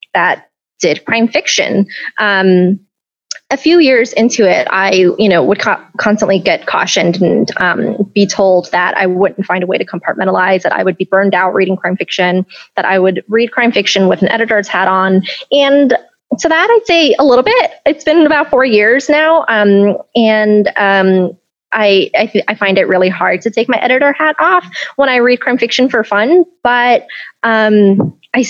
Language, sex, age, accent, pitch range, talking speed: English, female, 20-39, American, 190-250 Hz, 195 wpm